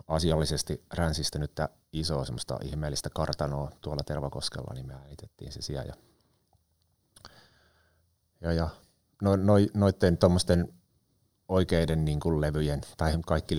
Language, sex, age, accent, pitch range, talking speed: Finnish, male, 30-49, native, 70-85 Hz, 100 wpm